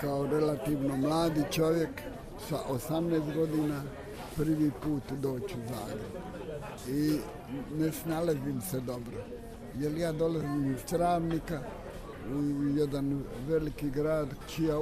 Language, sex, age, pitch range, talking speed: Croatian, male, 60-79, 145-165 Hz, 105 wpm